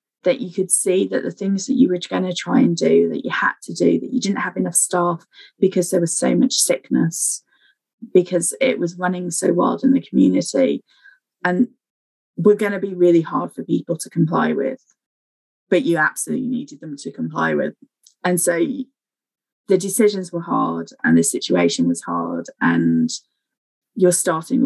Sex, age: female, 20-39